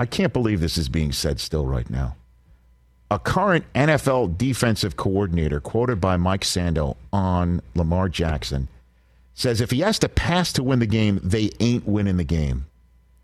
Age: 50-69